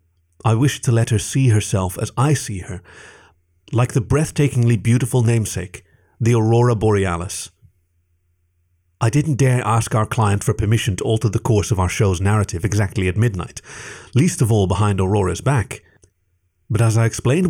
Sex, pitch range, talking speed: male, 95-125 Hz, 165 wpm